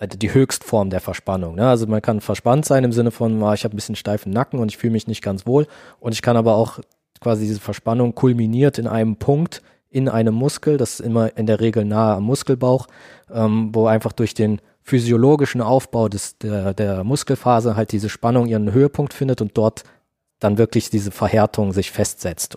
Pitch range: 110-135 Hz